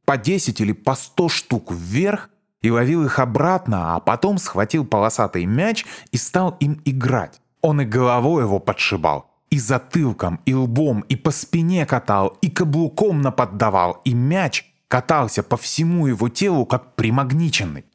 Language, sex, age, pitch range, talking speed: Russian, male, 20-39, 105-165 Hz, 150 wpm